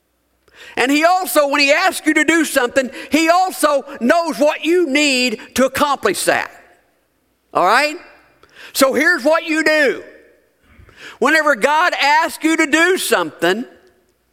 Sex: male